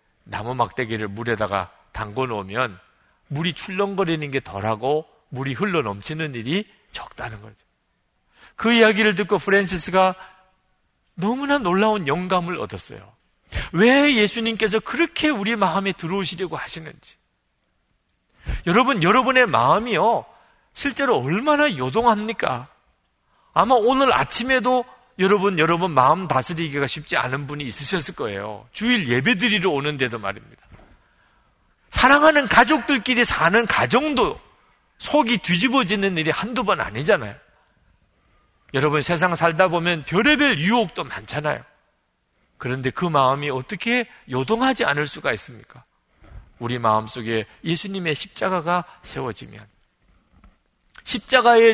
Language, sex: Korean, male